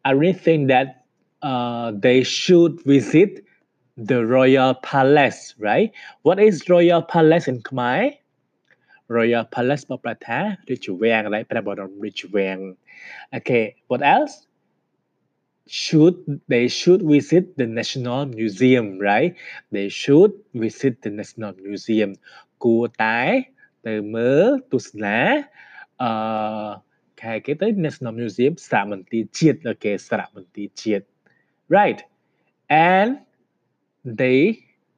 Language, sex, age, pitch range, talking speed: English, male, 20-39, 105-145 Hz, 80 wpm